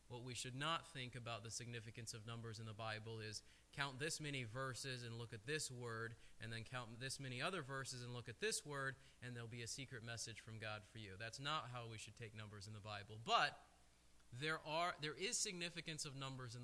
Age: 20-39